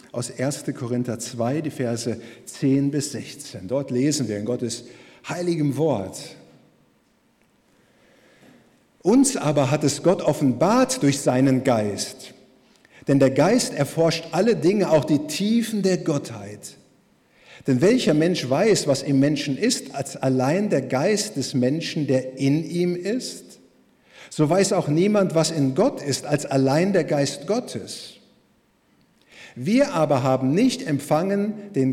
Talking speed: 135 wpm